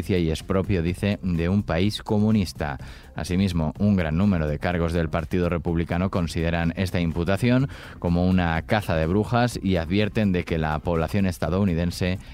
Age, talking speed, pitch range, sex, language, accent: 20-39, 155 wpm, 85-100 Hz, male, Spanish, Spanish